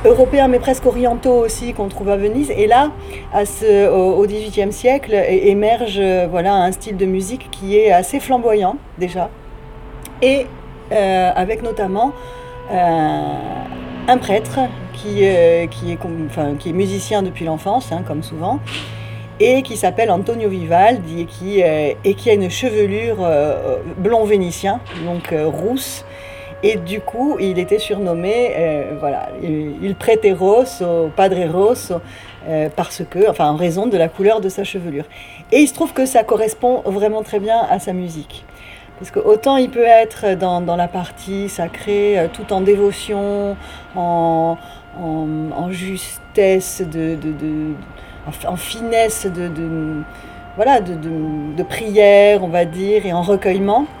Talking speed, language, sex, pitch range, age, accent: 155 wpm, French, female, 165-215 Hz, 40-59, French